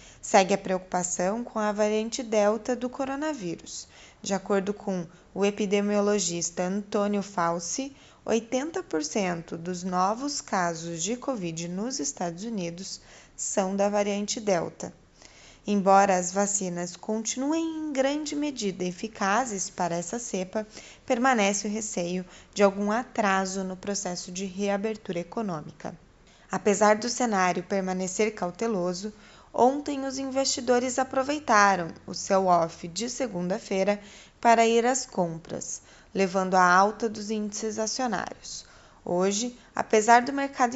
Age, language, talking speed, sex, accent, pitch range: 20-39, Portuguese, 115 wpm, female, Brazilian, 190-240 Hz